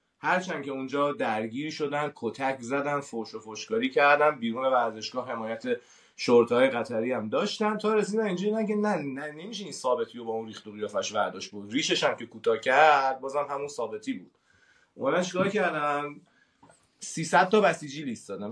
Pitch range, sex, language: 125-205 Hz, male, Persian